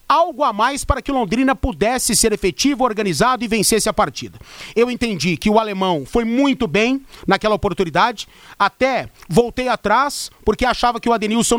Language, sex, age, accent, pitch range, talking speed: Portuguese, male, 40-59, Brazilian, 210-270 Hz, 165 wpm